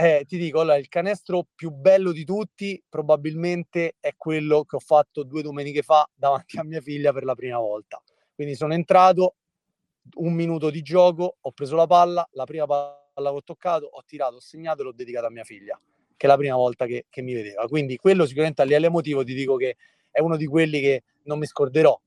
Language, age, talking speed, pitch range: Italian, 30-49, 210 wpm, 145-175 Hz